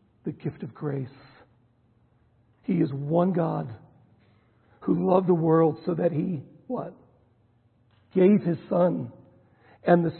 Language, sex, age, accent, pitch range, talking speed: English, male, 60-79, American, 120-175 Hz, 125 wpm